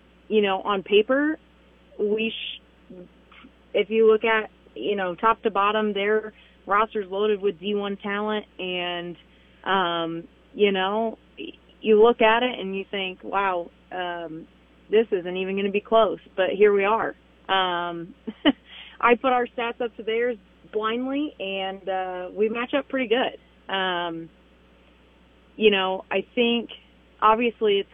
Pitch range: 175-215 Hz